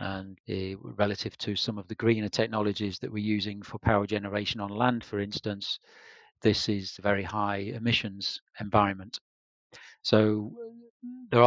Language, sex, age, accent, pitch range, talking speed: English, male, 40-59, British, 105-115 Hz, 145 wpm